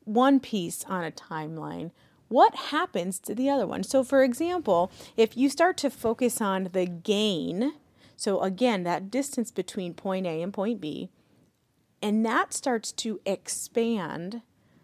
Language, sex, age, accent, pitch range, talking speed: English, female, 30-49, American, 185-250 Hz, 150 wpm